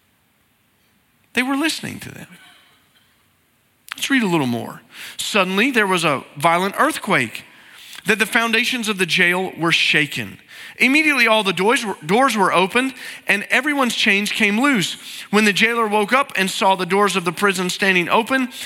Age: 40-59